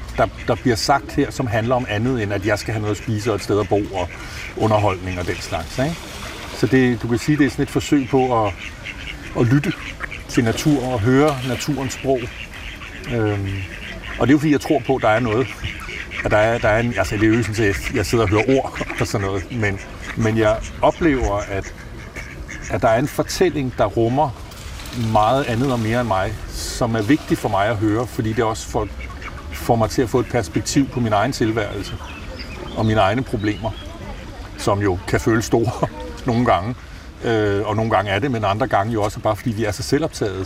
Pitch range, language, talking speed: 100-125 Hz, Danish, 225 wpm